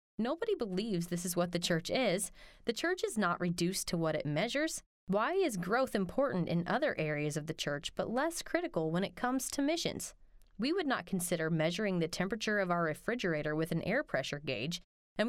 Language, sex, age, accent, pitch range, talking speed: English, female, 20-39, American, 175-245 Hz, 200 wpm